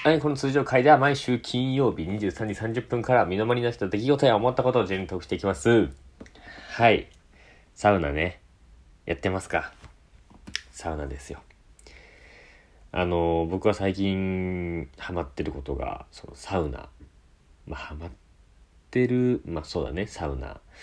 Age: 40-59